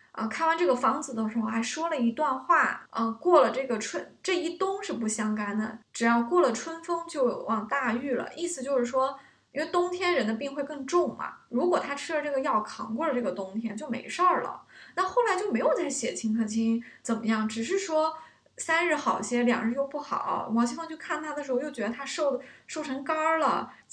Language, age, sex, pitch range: Chinese, 20-39, female, 235-320 Hz